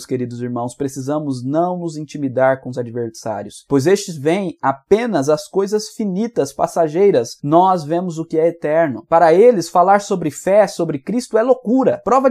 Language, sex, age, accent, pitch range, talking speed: Portuguese, male, 20-39, Brazilian, 135-195 Hz, 160 wpm